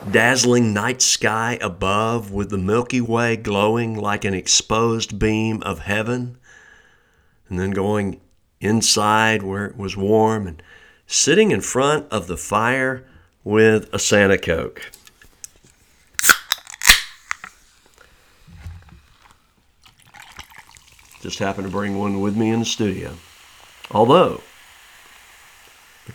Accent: American